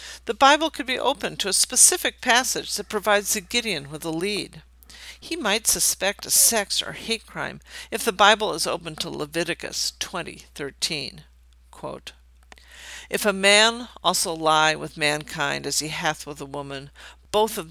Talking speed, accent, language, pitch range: 160 wpm, American, English, 145-205 Hz